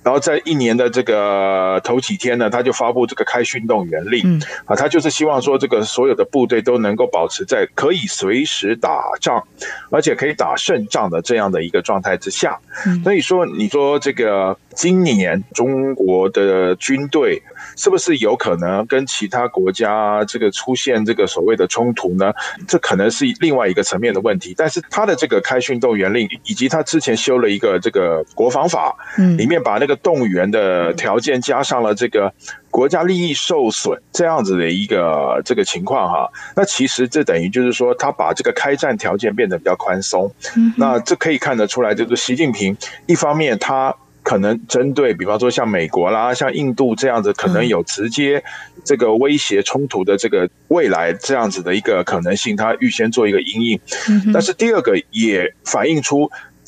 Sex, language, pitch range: male, Chinese, 115-195 Hz